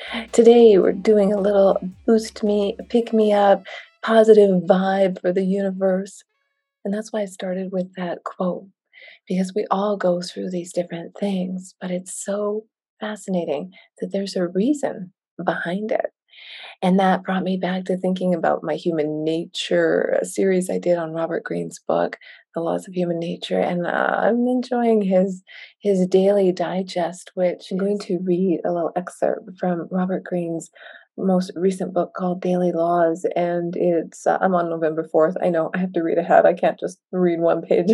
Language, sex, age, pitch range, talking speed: English, female, 30-49, 180-215 Hz, 175 wpm